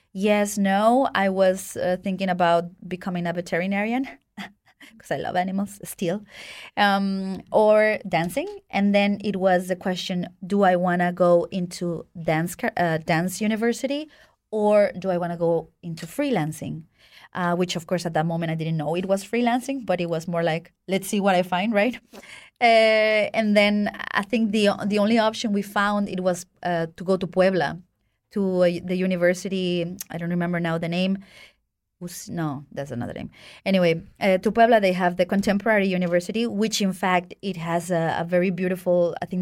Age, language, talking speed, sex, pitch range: 30-49, German, 180 wpm, female, 175-215 Hz